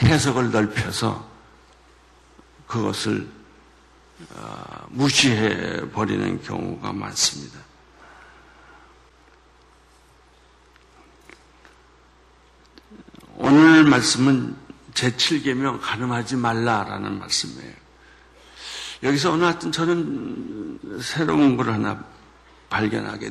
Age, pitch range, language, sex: 60-79, 110-155 Hz, Korean, male